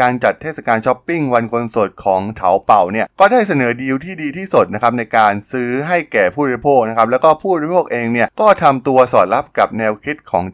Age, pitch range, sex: 20-39, 110-145 Hz, male